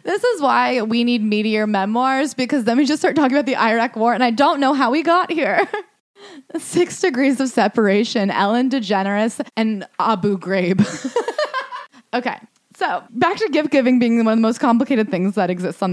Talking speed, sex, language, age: 190 wpm, female, English, 20-39